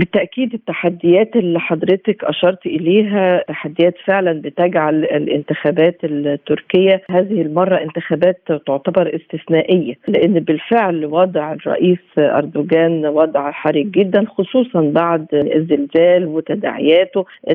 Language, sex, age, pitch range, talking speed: Arabic, female, 50-69, 160-200 Hz, 95 wpm